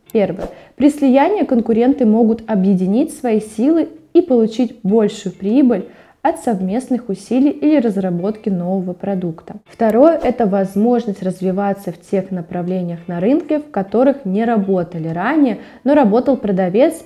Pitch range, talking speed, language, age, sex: 195-250 Hz, 125 wpm, Russian, 20-39, female